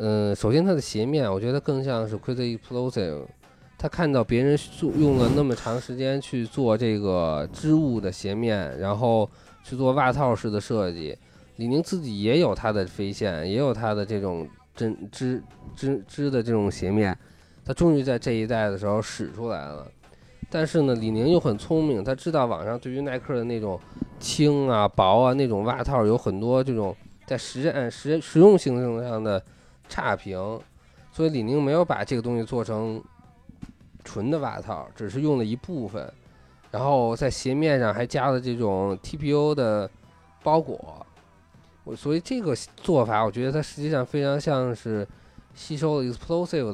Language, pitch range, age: Chinese, 105-140 Hz, 20-39